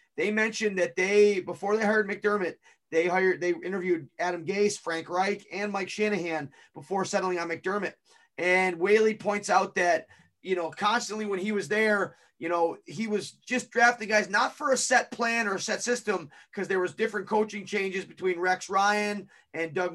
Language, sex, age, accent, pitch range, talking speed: English, male, 30-49, American, 180-220 Hz, 185 wpm